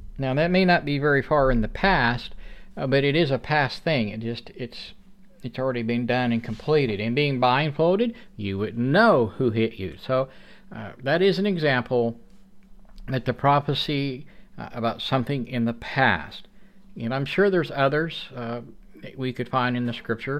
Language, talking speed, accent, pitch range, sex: English, 180 wpm, American, 120-175 Hz, male